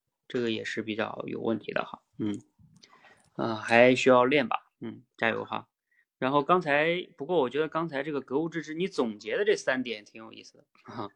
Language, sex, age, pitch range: Chinese, male, 20-39, 120-160 Hz